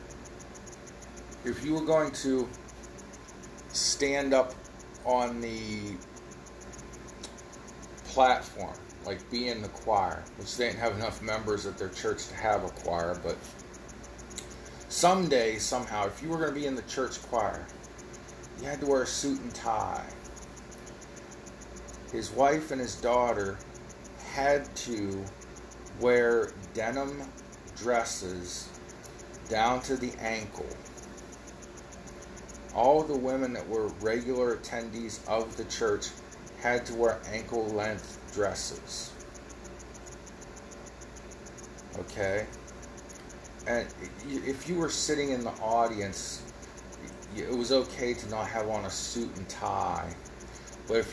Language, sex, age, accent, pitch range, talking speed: English, male, 40-59, American, 95-125 Hz, 115 wpm